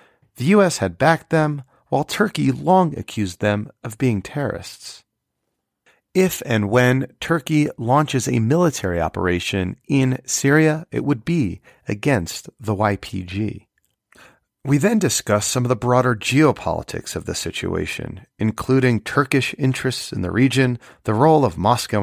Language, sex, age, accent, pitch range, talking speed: English, male, 40-59, American, 105-145 Hz, 135 wpm